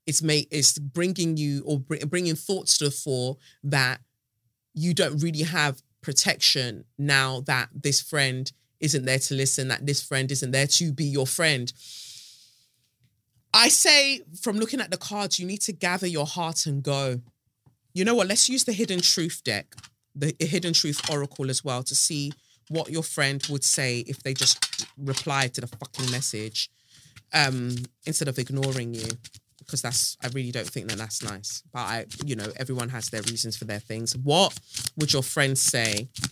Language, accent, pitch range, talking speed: English, British, 120-150 Hz, 180 wpm